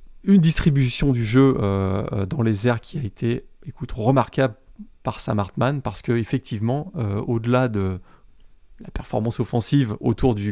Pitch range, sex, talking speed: 105-135 Hz, male, 150 wpm